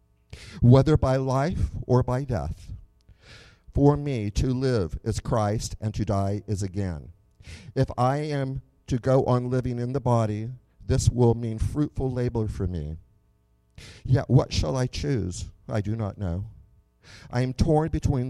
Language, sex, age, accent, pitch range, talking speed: English, male, 50-69, American, 100-130 Hz, 155 wpm